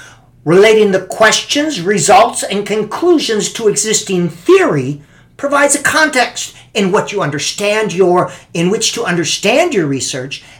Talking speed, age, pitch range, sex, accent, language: 130 wpm, 50-69, 165-225 Hz, male, American, English